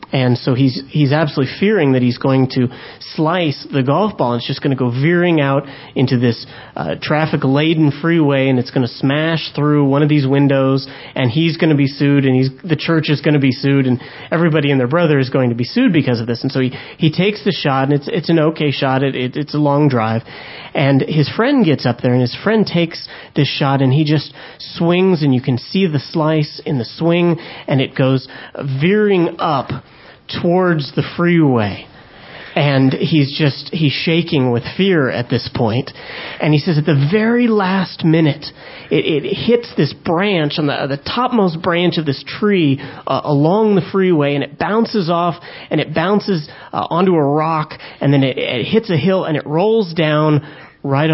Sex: male